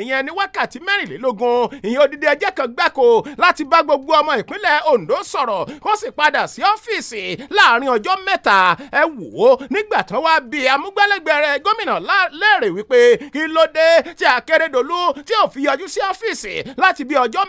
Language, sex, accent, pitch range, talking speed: English, male, Nigerian, 275-395 Hz, 205 wpm